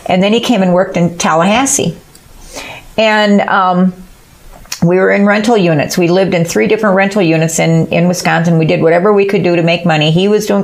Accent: American